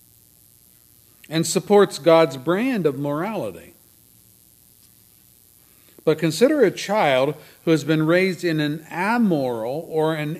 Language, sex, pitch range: English, male, 110-165 Hz